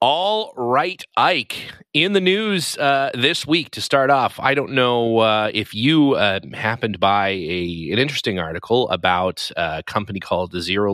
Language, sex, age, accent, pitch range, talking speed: English, male, 30-49, American, 95-120 Hz, 170 wpm